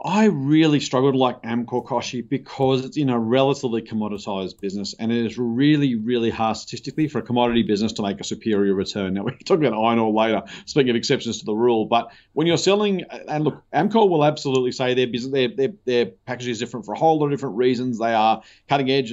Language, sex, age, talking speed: English, male, 30-49, 225 wpm